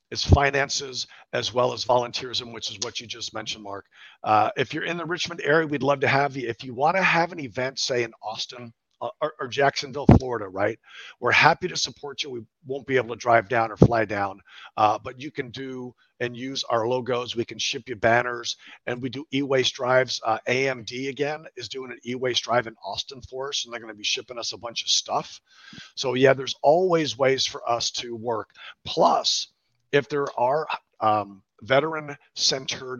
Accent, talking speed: American, 205 wpm